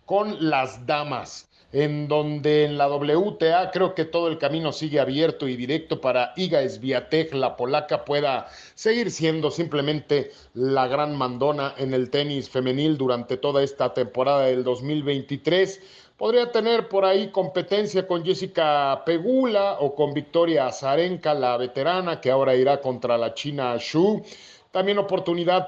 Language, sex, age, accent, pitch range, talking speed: Spanish, male, 40-59, Mexican, 135-170 Hz, 145 wpm